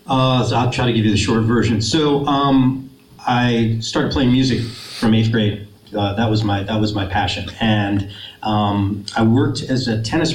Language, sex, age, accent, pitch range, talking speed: English, male, 40-59, American, 100-115 Hz, 195 wpm